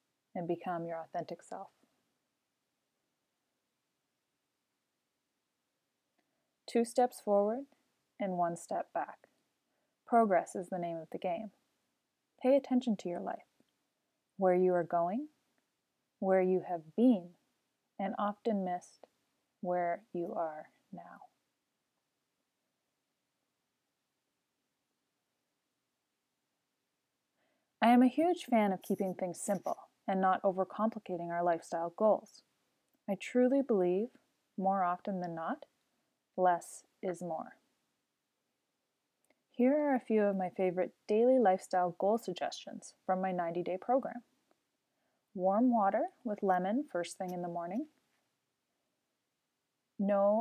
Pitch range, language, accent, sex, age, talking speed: 180-240 Hz, English, American, female, 30-49, 105 wpm